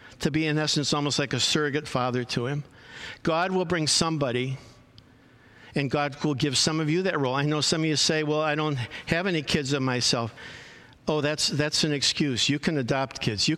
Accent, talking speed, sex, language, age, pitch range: American, 210 wpm, male, English, 50-69, 125-150 Hz